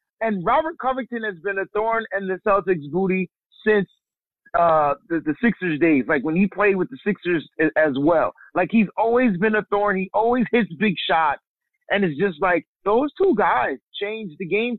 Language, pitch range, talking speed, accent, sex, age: English, 175-255 Hz, 190 wpm, American, male, 30-49